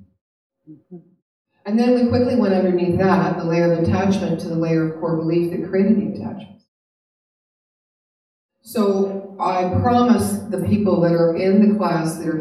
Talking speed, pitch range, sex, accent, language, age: 160 wpm, 165-195 Hz, female, American, English, 50-69